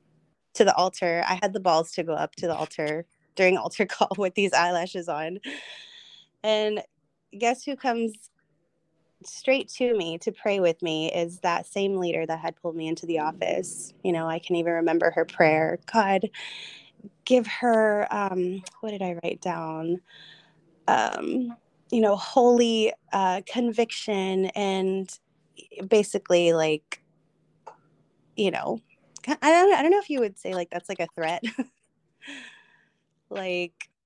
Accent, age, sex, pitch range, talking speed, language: American, 20-39, female, 170-230 Hz, 150 wpm, English